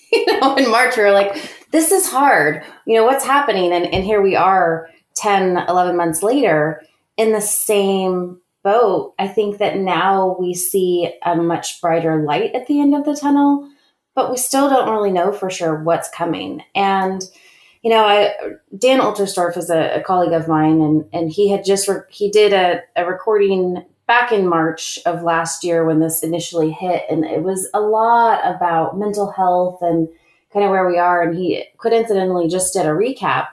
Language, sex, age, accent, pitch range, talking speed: English, female, 30-49, American, 170-210 Hz, 190 wpm